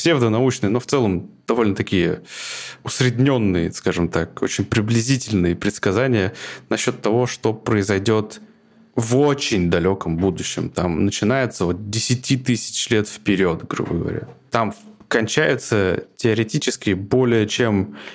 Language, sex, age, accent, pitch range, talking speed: Russian, male, 20-39, native, 95-120 Hz, 110 wpm